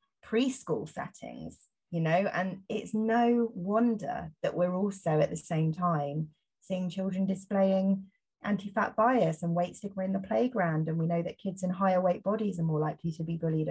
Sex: female